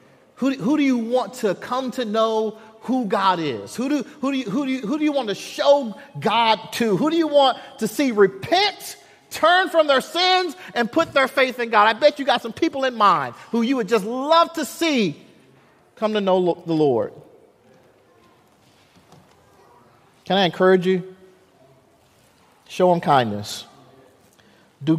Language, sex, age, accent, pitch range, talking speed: English, male, 40-59, American, 150-235 Hz, 180 wpm